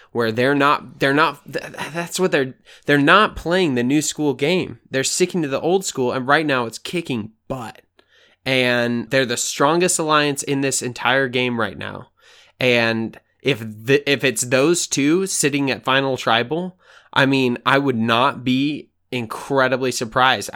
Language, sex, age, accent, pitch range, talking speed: English, male, 20-39, American, 125-155 Hz, 165 wpm